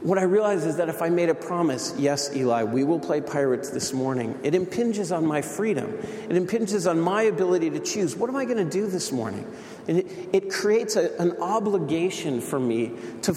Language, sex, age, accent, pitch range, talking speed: English, male, 40-59, American, 140-185 Hz, 215 wpm